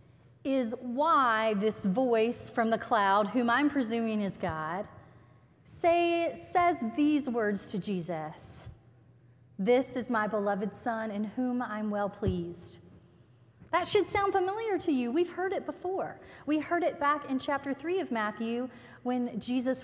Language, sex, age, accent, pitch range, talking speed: English, female, 30-49, American, 160-265 Hz, 150 wpm